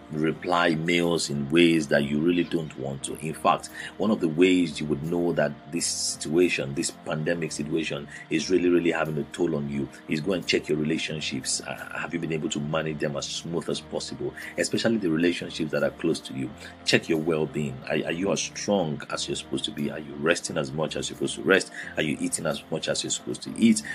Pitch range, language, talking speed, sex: 70-85 Hz, English, 230 wpm, male